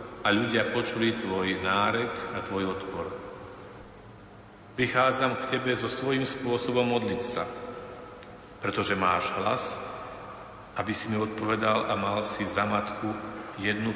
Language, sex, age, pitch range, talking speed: Slovak, male, 50-69, 100-115 Hz, 120 wpm